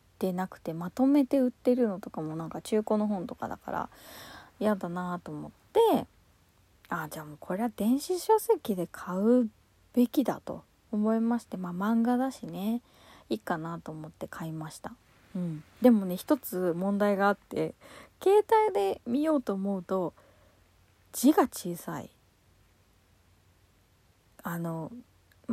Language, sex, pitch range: Japanese, female, 160-250 Hz